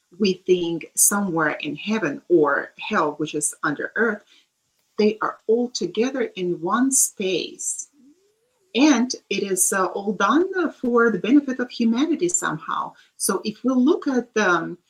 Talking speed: 145 wpm